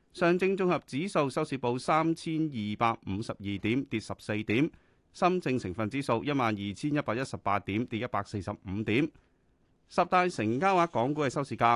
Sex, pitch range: male, 105-150 Hz